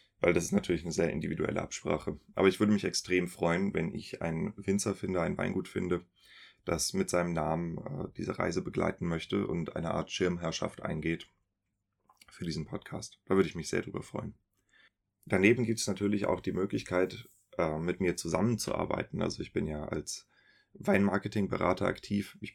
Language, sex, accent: German, male, German